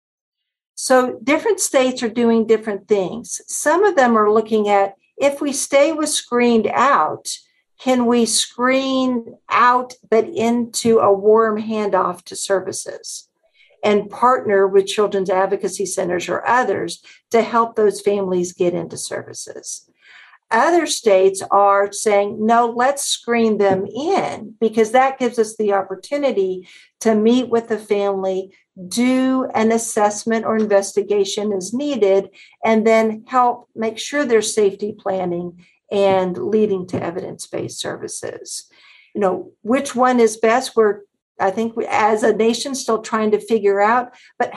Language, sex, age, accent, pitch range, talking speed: English, female, 50-69, American, 200-250 Hz, 140 wpm